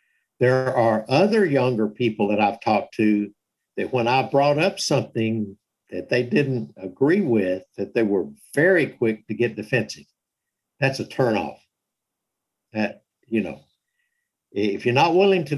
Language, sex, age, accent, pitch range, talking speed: English, male, 60-79, American, 110-150 Hz, 150 wpm